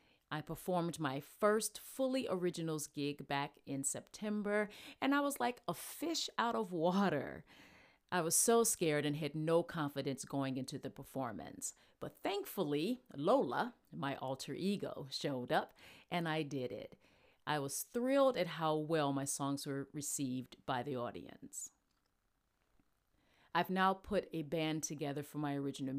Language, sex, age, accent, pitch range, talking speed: Ukrainian, female, 40-59, American, 145-190 Hz, 150 wpm